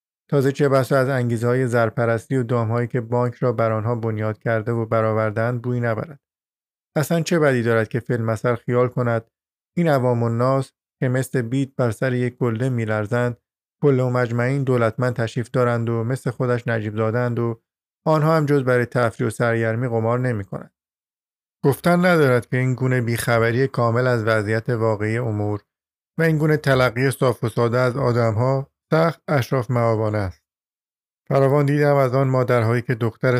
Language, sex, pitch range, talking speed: Persian, male, 115-130 Hz, 160 wpm